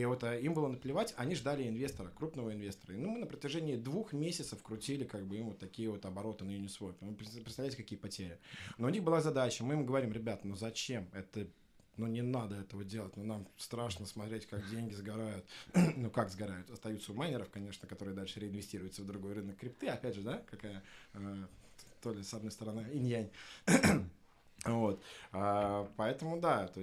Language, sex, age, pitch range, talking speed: Russian, male, 20-39, 95-130 Hz, 190 wpm